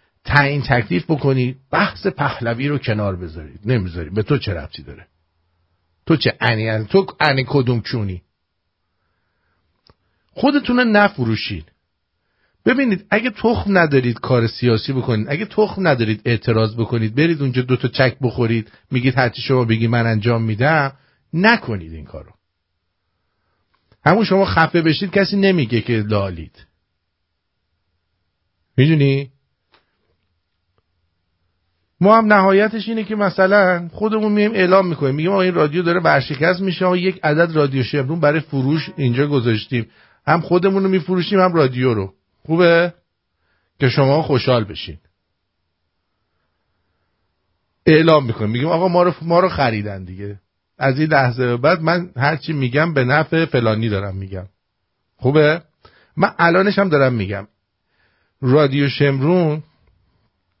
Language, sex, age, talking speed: English, male, 50-69, 125 wpm